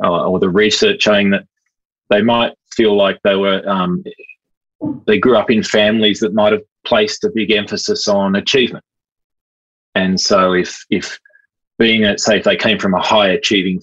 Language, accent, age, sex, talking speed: English, Australian, 20-39, male, 155 wpm